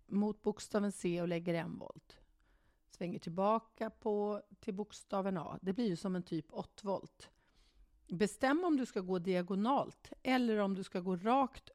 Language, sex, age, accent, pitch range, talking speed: Swedish, female, 40-59, native, 180-225 Hz, 170 wpm